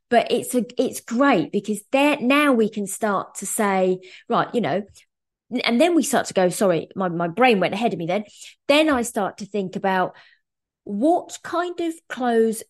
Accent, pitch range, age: British, 195-255 Hz, 20-39